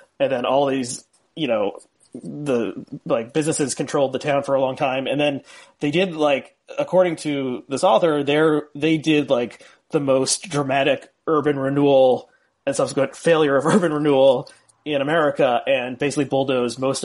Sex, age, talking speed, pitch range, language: male, 30-49, 160 wpm, 130-160 Hz, English